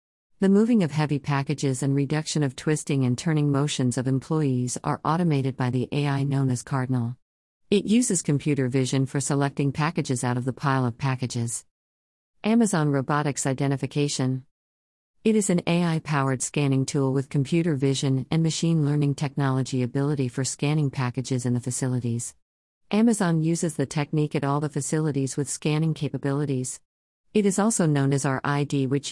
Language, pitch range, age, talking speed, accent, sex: English, 130-150 Hz, 50-69, 155 wpm, American, female